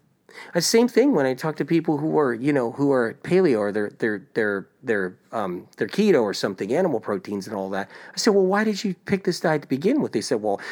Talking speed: 250 wpm